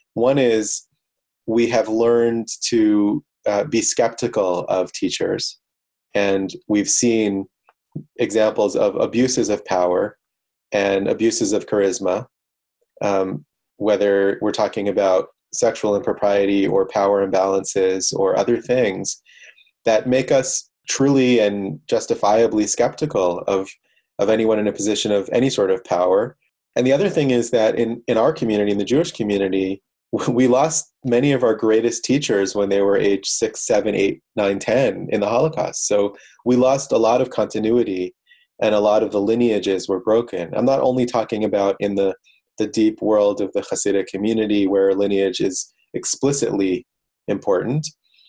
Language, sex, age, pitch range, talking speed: English, male, 30-49, 100-120 Hz, 150 wpm